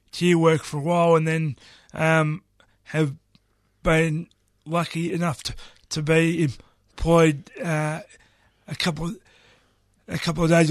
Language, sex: English, male